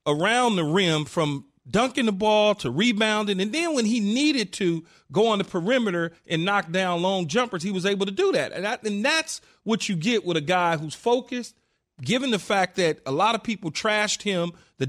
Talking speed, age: 215 wpm, 40-59